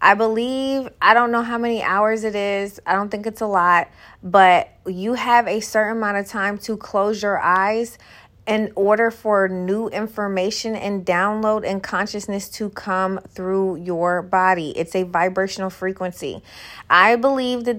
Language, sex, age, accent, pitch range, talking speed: English, female, 20-39, American, 185-220 Hz, 165 wpm